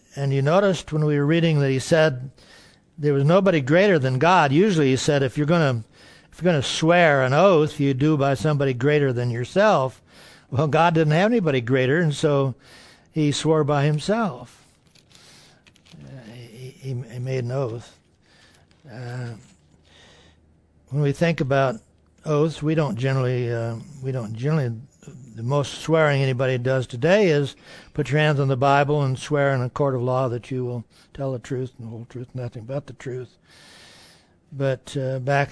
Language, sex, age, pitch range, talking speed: English, male, 60-79, 130-150 Hz, 175 wpm